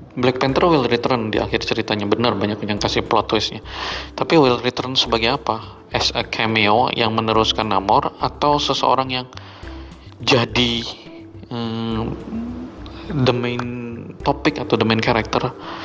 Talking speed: 135 wpm